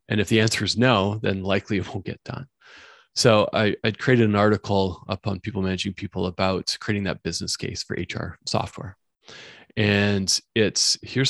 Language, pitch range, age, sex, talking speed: English, 100-120 Hz, 20-39, male, 180 wpm